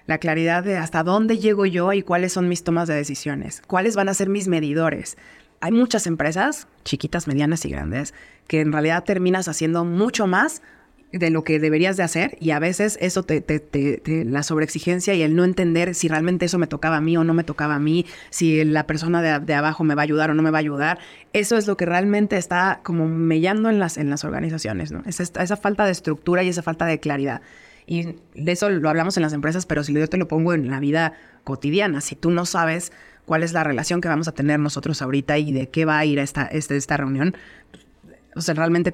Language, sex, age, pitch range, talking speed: Spanish, female, 30-49, 150-180 Hz, 235 wpm